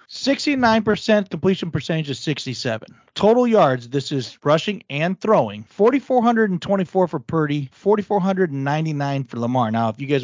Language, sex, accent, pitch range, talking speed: English, male, American, 130-190 Hz, 125 wpm